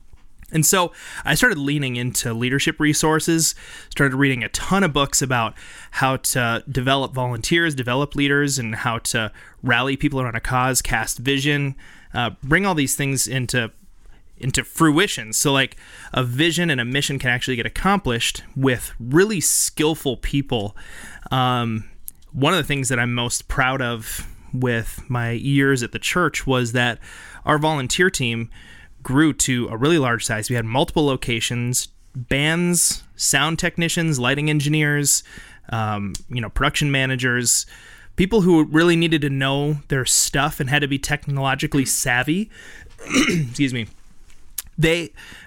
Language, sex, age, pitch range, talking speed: English, male, 30-49, 120-150 Hz, 150 wpm